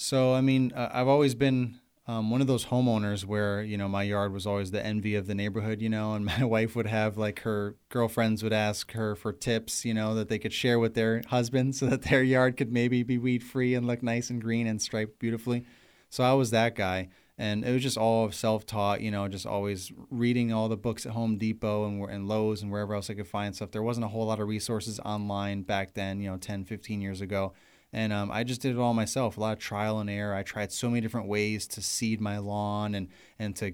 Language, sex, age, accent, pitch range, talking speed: English, male, 30-49, American, 105-120 Hz, 250 wpm